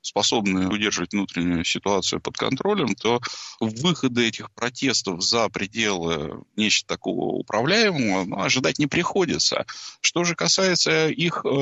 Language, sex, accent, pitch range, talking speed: Russian, male, native, 95-135 Hz, 120 wpm